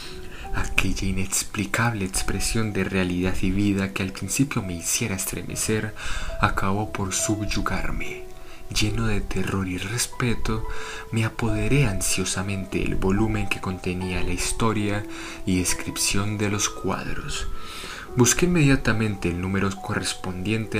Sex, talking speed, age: male, 115 wpm, 20-39